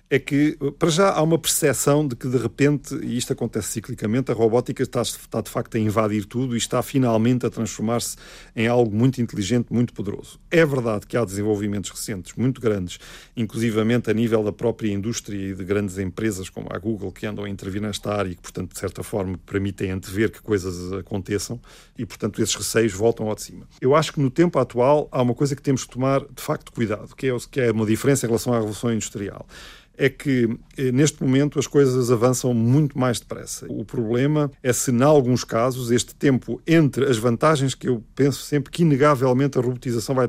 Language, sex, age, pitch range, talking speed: Portuguese, male, 40-59, 110-135 Hz, 205 wpm